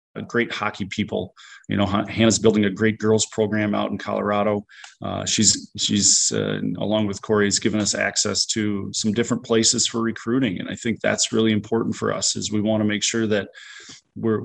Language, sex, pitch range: English, male, 105-110 Hz